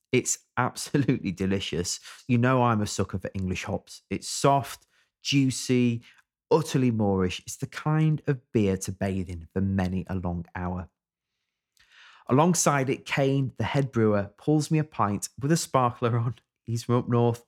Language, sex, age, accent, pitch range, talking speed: English, male, 30-49, British, 95-130 Hz, 160 wpm